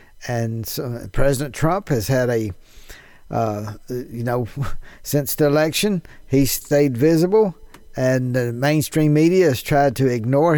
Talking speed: 130 wpm